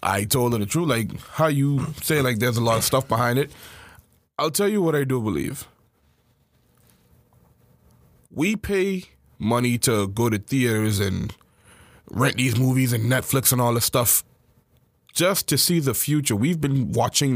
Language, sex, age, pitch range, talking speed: English, male, 20-39, 120-180 Hz, 170 wpm